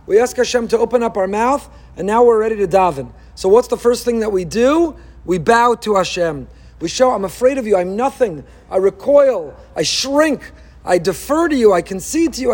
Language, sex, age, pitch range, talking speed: English, male, 40-59, 185-255 Hz, 220 wpm